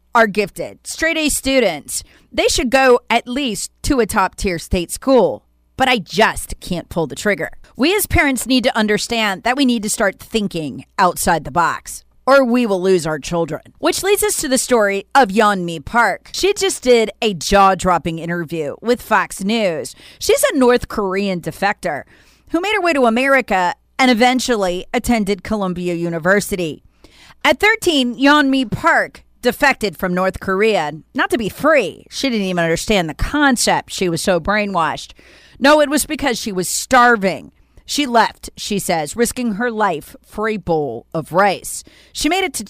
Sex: female